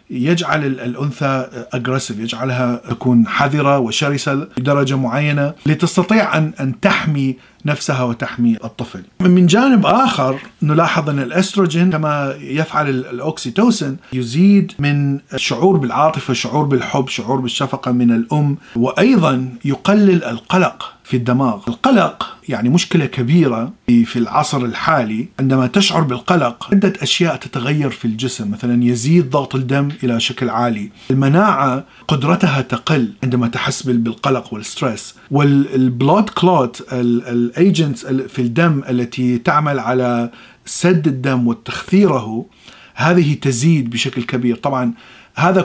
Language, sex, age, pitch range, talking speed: Arabic, male, 40-59, 125-165 Hz, 110 wpm